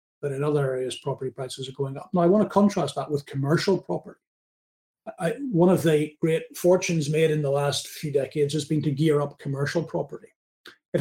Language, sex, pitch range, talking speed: English, male, 145-165 Hz, 200 wpm